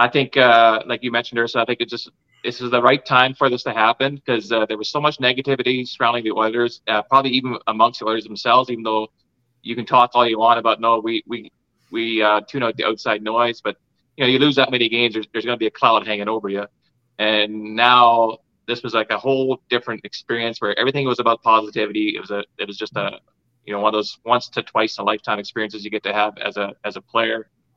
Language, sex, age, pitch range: English, male, 30-49, 110-125 Hz